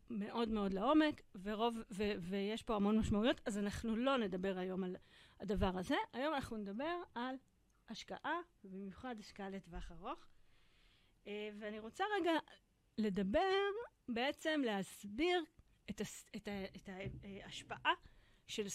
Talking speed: 130 wpm